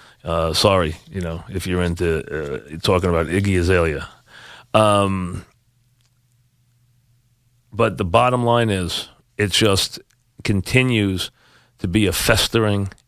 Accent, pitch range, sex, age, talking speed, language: American, 95-125 Hz, male, 40-59, 115 wpm, English